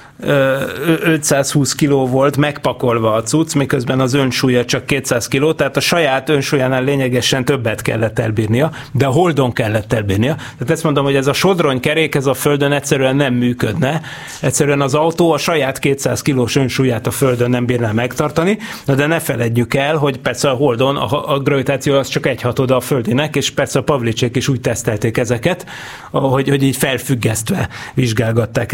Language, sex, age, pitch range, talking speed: Hungarian, male, 30-49, 125-150 Hz, 175 wpm